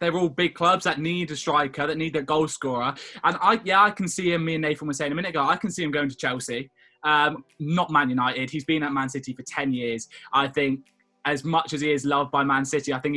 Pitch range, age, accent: 140-175 Hz, 20-39, British